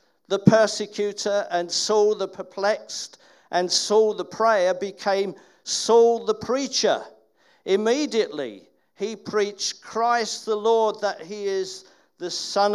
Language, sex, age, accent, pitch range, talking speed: English, male, 50-69, British, 195-235 Hz, 120 wpm